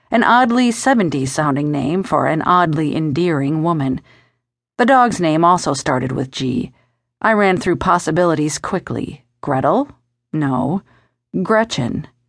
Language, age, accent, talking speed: English, 50-69, American, 115 wpm